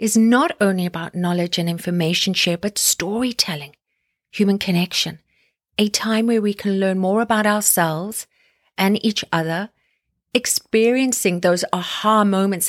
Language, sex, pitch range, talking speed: English, female, 175-230 Hz, 130 wpm